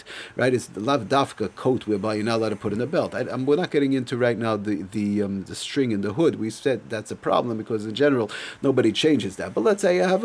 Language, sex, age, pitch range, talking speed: English, male, 40-59, 115-145 Hz, 265 wpm